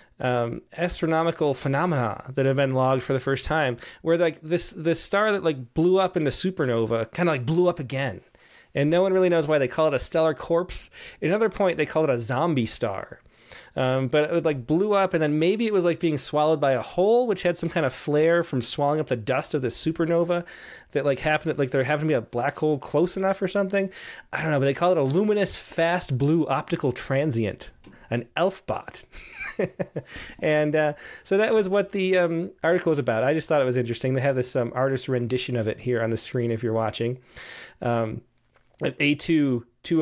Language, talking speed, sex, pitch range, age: English, 220 wpm, male, 125-170 Hz, 30-49